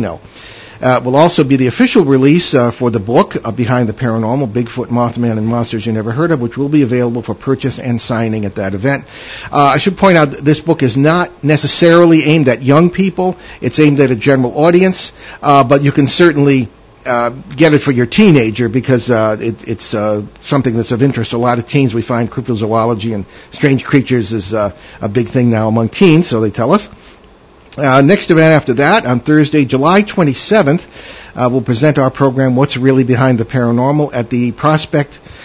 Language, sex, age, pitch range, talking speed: English, male, 50-69, 120-150 Hz, 200 wpm